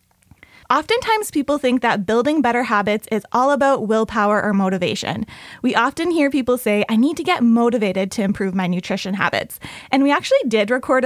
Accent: American